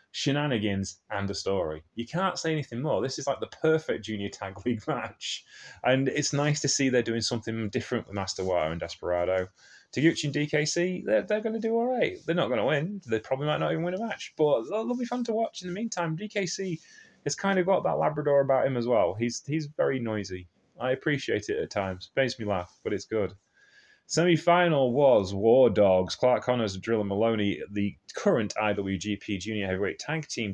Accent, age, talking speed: British, 30-49, 205 wpm